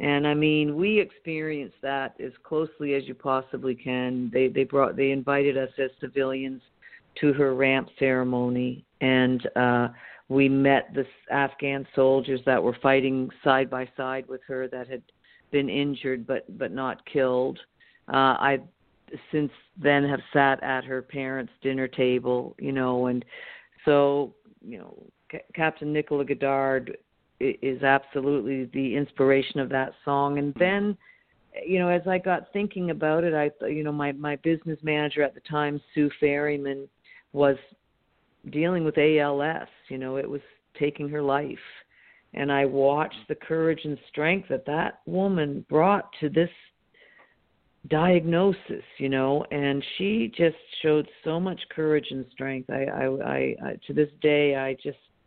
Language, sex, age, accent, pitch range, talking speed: English, female, 50-69, American, 135-150 Hz, 155 wpm